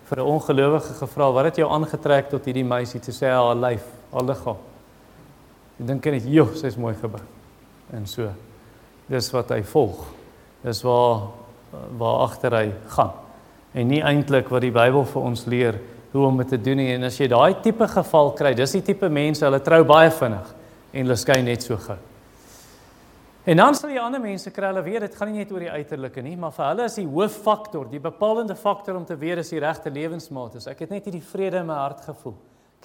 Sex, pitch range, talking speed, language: male, 125-180 Hz, 215 wpm, English